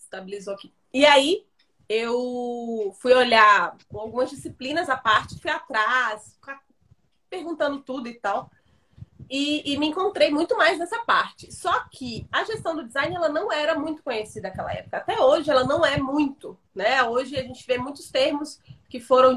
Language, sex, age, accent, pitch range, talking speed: Portuguese, female, 30-49, Brazilian, 240-310 Hz, 165 wpm